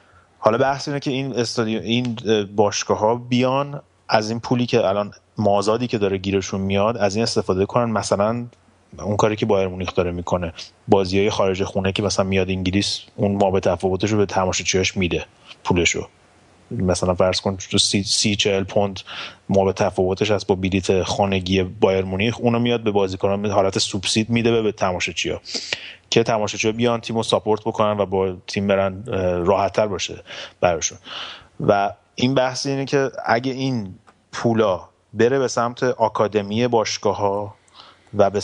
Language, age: Persian, 30-49